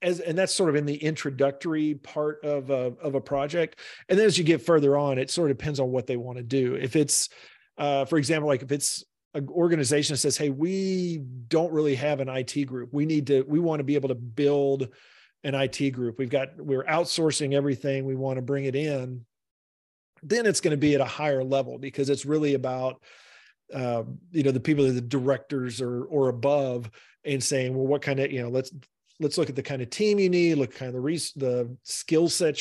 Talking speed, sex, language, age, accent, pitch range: 235 wpm, male, English, 40-59, American, 130-150 Hz